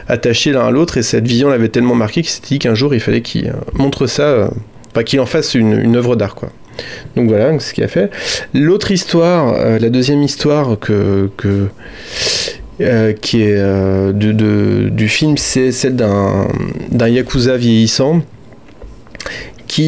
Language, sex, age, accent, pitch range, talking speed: French, male, 30-49, French, 110-130 Hz, 180 wpm